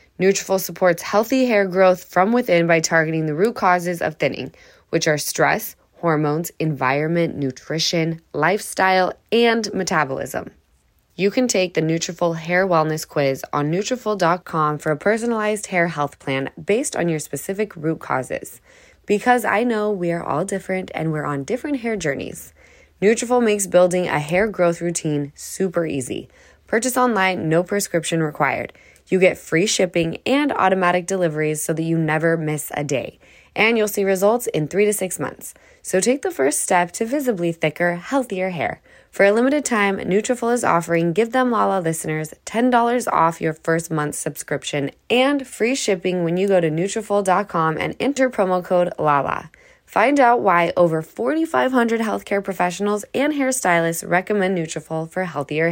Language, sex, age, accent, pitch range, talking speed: English, female, 10-29, American, 165-225 Hz, 160 wpm